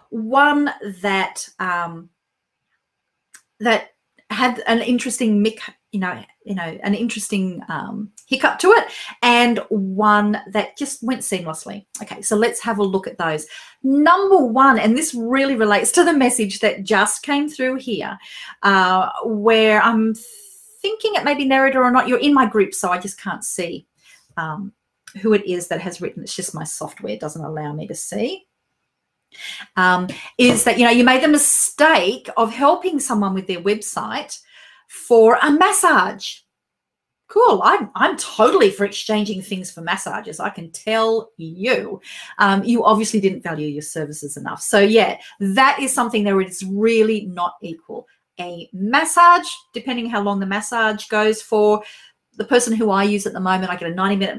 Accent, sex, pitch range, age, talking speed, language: Australian, female, 195-250 Hz, 40-59, 165 wpm, English